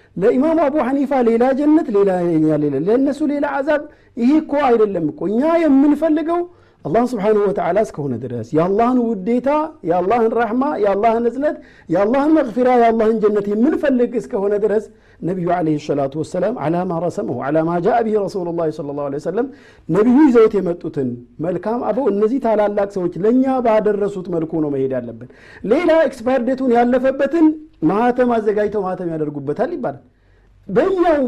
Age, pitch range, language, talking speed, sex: 50-69, 175-270 Hz, Amharic, 155 wpm, male